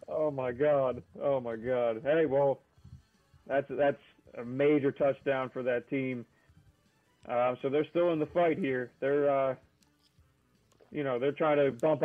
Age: 30-49